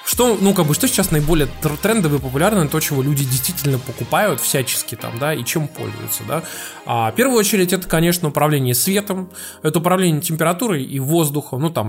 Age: 20-39